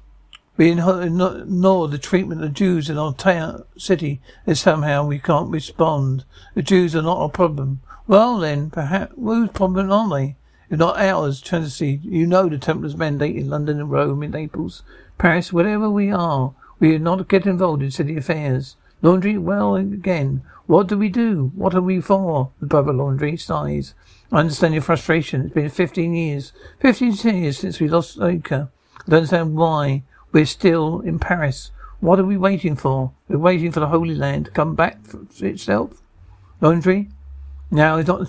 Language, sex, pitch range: English, male, 145-180 Hz